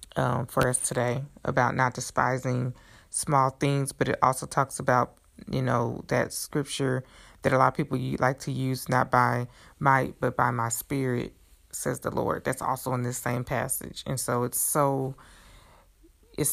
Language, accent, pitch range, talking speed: English, American, 130-155 Hz, 170 wpm